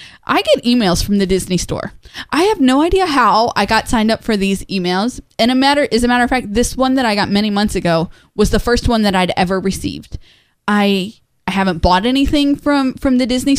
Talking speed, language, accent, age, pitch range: 230 wpm, English, American, 20-39, 190-235 Hz